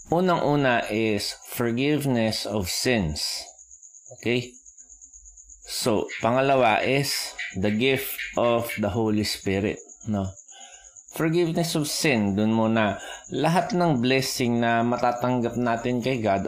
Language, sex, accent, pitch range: Filipino, male, native, 105-130 Hz